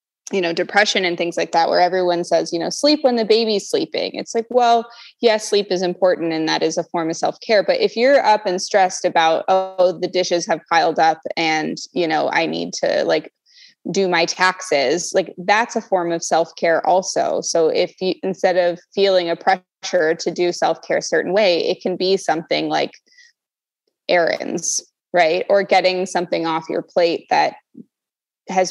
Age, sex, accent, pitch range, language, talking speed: 20-39, female, American, 170-210 Hz, English, 190 wpm